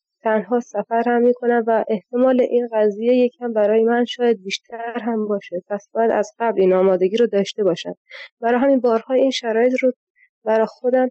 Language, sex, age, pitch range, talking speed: Persian, female, 20-39, 210-245 Hz, 165 wpm